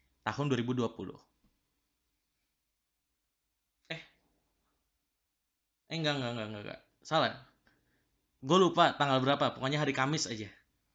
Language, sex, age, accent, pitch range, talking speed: Indonesian, male, 20-39, native, 110-135 Hz, 95 wpm